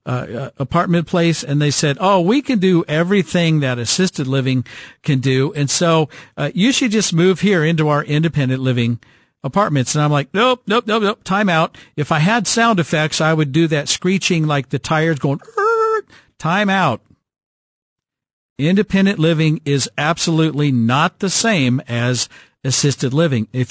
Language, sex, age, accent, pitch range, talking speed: English, male, 50-69, American, 140-185 Hz, 165 wpm